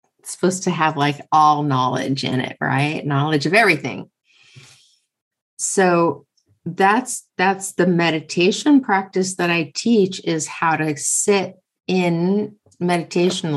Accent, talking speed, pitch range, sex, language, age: American, 120 wpm, 145-175 Hz, female, English, 30-49